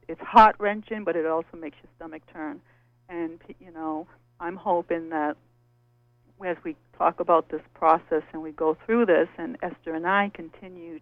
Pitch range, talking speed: 160-195 Hz, 175 wpm